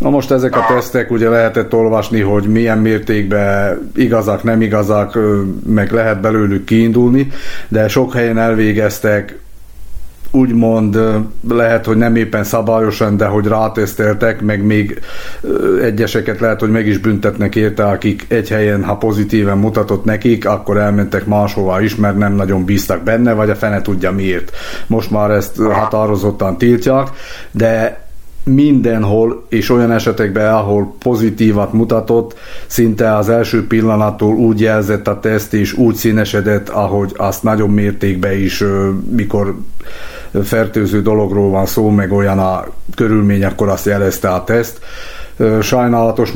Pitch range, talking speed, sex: 105-115 Hz, 135 wpm, male